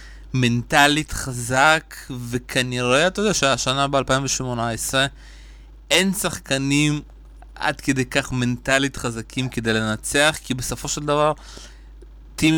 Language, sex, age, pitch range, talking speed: Hebrew, male, 20-39, 125-145 Hz, 100 wpm